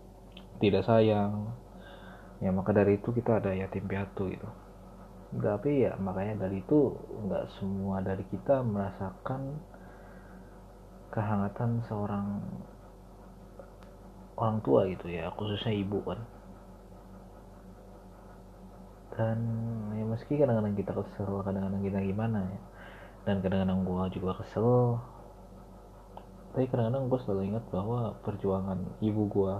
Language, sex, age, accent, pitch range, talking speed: Indonesian, male, 30-49, native, 95-105 Hz, 110 wpm